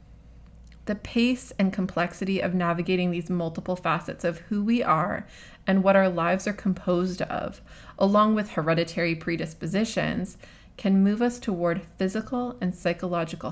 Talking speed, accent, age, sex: 140 wpm, American, 20-39, female